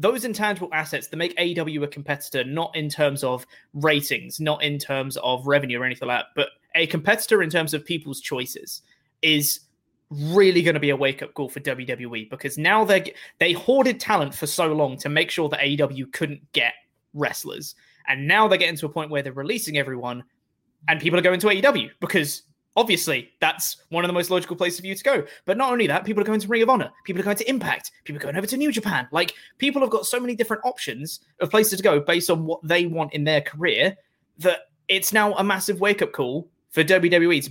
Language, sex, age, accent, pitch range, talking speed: English, male, 20-39, British, 145-195 Hz, 225 wpm